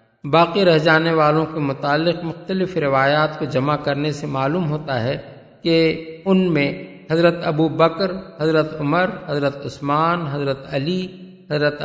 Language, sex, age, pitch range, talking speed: Urdu, male, 50-69, 145-185 Hz, 140 wpm